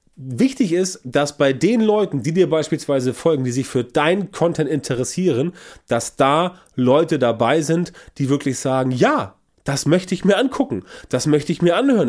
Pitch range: 130-175 Hz